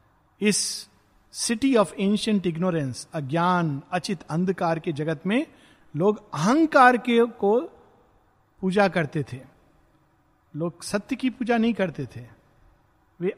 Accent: native